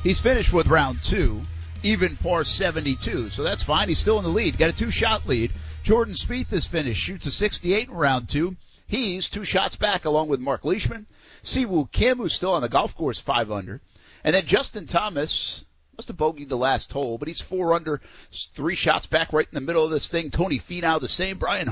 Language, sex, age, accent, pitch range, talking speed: English, male, 50-69, American, 115-155 Hz, 215 wpm